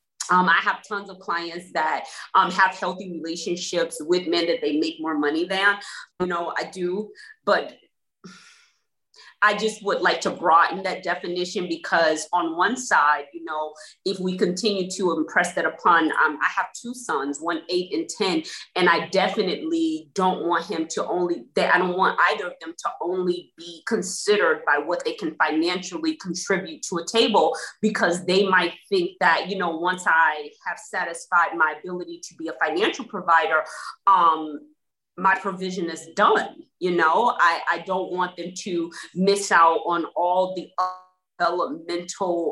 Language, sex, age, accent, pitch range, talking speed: English, female, 30-49, American, 165-200 Hz, 170 wpm